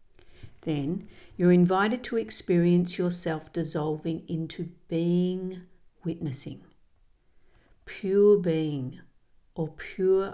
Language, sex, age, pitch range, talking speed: English, female, 50-69, 160-190 Hz, 80 wpm